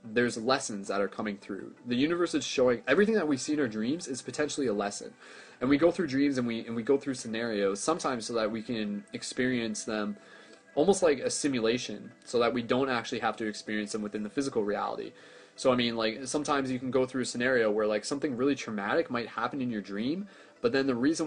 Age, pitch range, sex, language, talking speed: 20-39, 105-135 Hz, male, English, 230 wpm